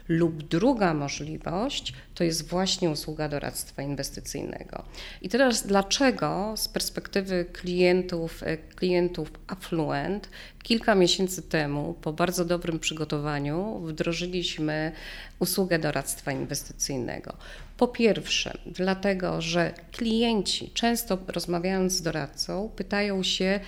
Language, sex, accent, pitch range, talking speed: Polish, female, native, 155-195 Hz, 100 wpm